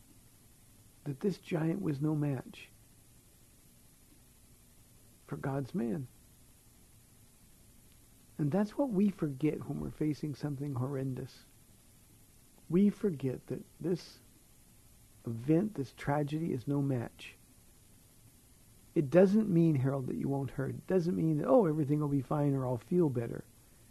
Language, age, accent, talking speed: English, 60-79, American, 125 wpm